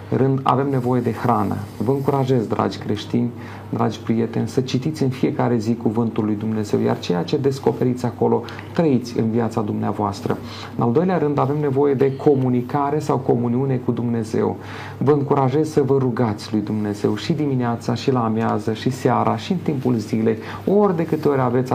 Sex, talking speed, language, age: male, 175 wpm, Romanian, 40-59